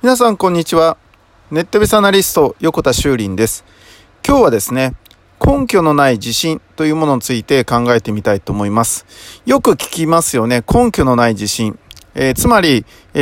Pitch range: 115-180 Hz